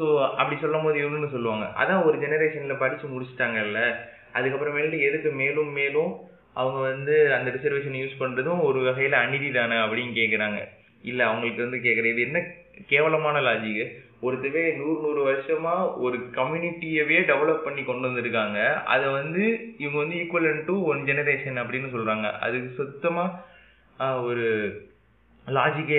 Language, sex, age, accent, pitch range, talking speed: Tamil, male, 20-39, native, 125-155 Hz, 140 wpm